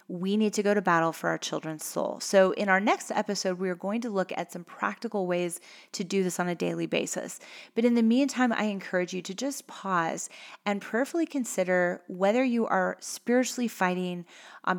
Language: English